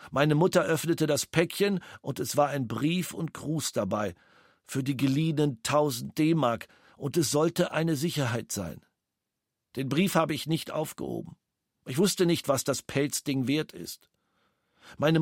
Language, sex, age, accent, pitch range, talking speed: German, male, 50-69, German, 130-160 Hz, 155 wpm